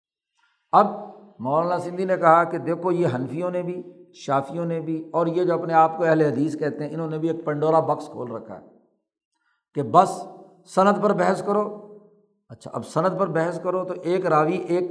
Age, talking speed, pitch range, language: 60-79, 195 wpm, 160-210 Hz, Urdu